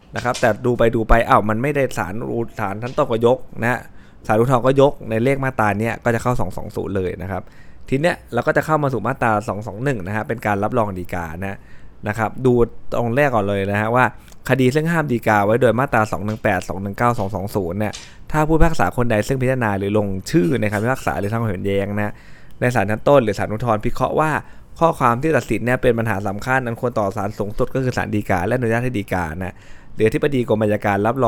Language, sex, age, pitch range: Thai, male, 20-39, 100-125 Hz